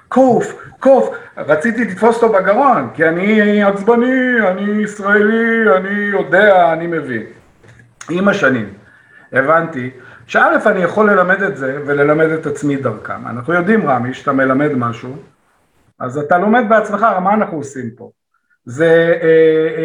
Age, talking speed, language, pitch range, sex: 50-69, 135 wpm, Hebrew, 145-210 Hz, male